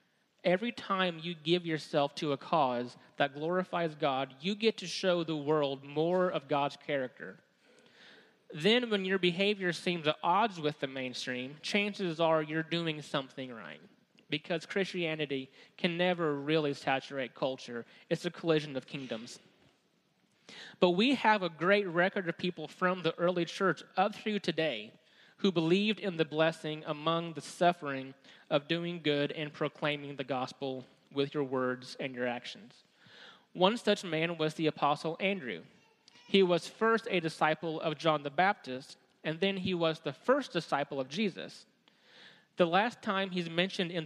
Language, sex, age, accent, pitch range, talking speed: English, male, 30-49, American, 150-185 Hz, 160 wpm